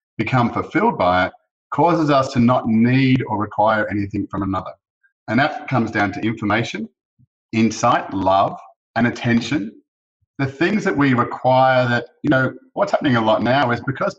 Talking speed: 165 wpm